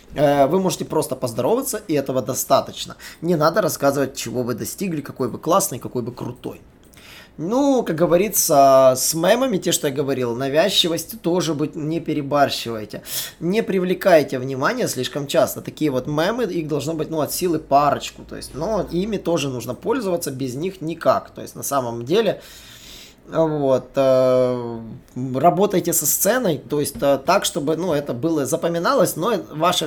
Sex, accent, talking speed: male, native, 155 wpm